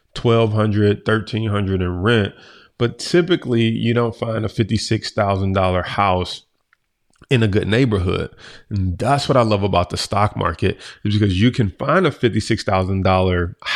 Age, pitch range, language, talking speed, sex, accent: 30-49, 95-115 Hz, English, 140 wpm, male, American